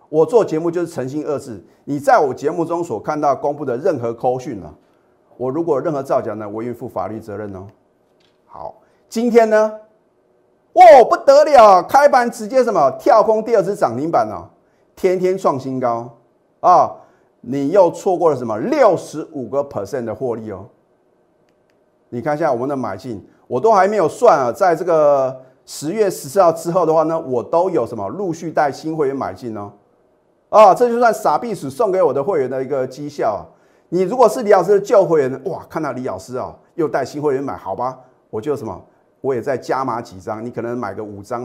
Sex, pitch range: male, 120-185 Hz